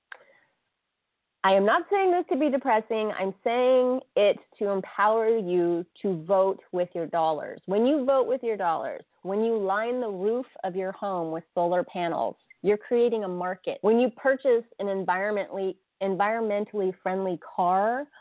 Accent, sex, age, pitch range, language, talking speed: American, female, 30-49, 190-265 Hz, English, 160 wpm